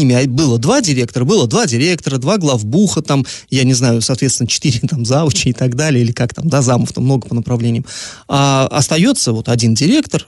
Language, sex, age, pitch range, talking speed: Russian, male, 30-49, 125-165 Hz, 195 wpm